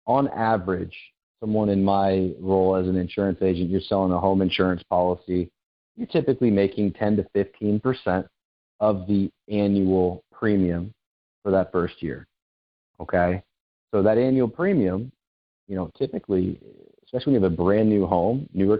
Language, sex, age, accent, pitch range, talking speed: English, male, 40-59, American, 90-105 Hz, 150 wpm